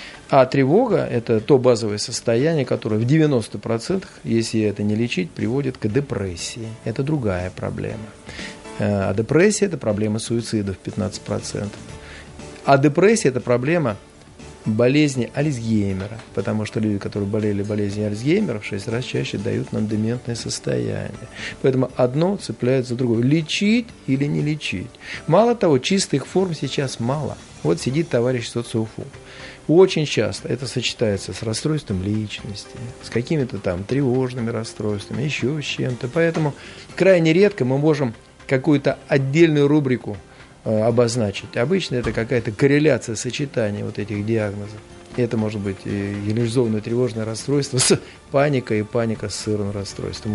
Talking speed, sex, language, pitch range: 135 wpm, male, Russian, 105-140 Hz